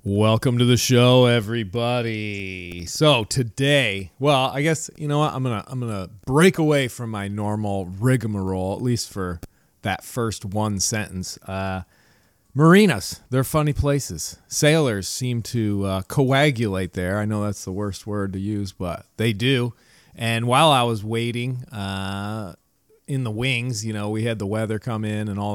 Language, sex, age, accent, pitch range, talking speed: English, male, 30-49, American, 105-140 Hz, 165 wpm